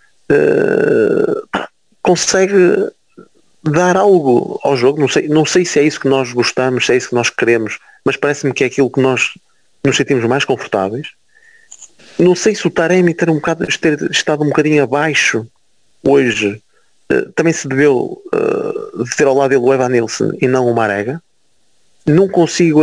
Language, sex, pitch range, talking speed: Portuguese, male, 130-190 Hz, 170 wpm